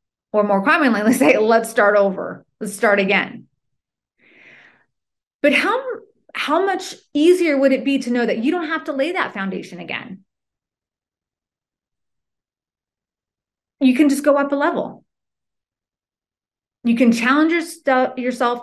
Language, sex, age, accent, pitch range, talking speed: English, female, 30-49, American, 220-290 Hz, 130 wpm